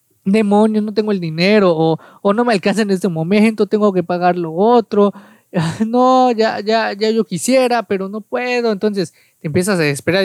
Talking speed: 185 wpm